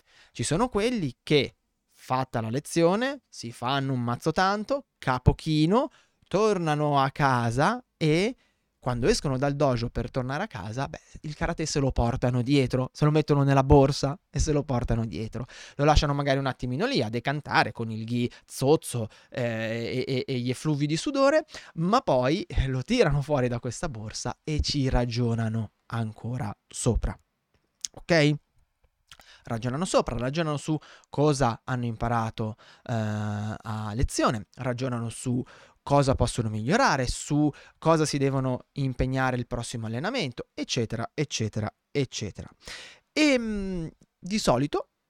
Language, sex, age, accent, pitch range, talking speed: Italian, male, 20-39, native, 120-155 Hz, 140 wpm